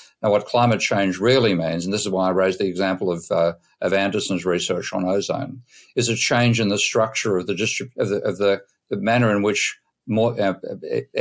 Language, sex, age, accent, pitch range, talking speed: English, male, 50-69, Australian, 95-120 Hz, 215 wpm